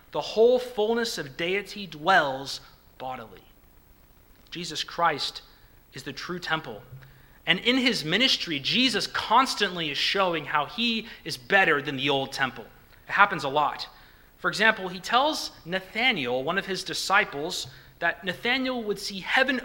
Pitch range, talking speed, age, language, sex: 160-230 Hz, 145 wpm, 30-49, English, male